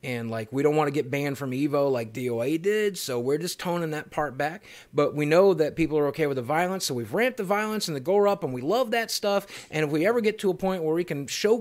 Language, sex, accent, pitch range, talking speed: English, male, American, 150-220 Hz, 290 wpm